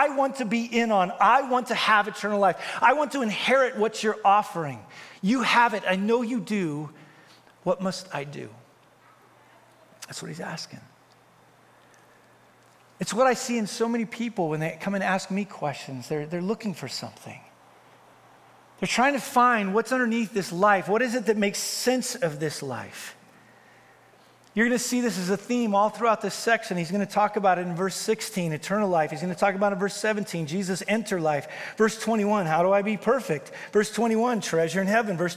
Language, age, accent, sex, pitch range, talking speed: English, 40-59, American, male, 180-230 Hz, 200 wpm